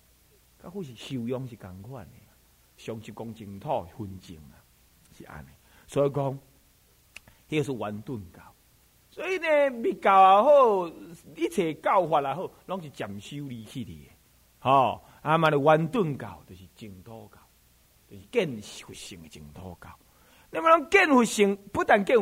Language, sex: Chinese, male